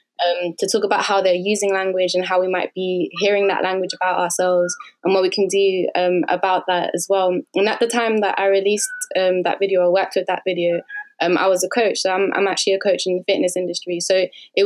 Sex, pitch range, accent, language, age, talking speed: female, 180-200 Hz, British, English, 20-39, 245 wpm